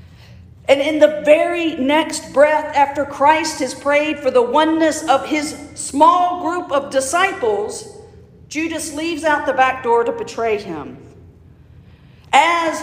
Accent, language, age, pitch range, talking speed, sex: American, English, 50-69, 245-315 Hz, 135 wpm, female